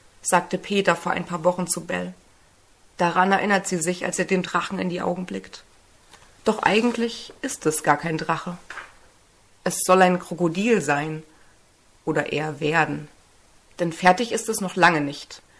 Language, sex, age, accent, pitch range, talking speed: German, female, 30-49, German, 160-200 Hz, 160 wpm